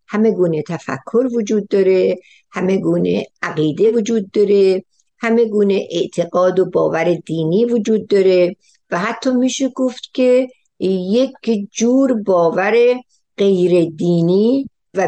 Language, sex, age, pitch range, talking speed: Persian, female, 60-79, 175-230 Hz, 115 wpm